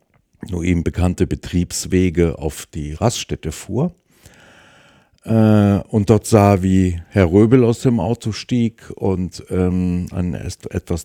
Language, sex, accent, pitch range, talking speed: German, male, German, 85-105 Hz, 125 wpm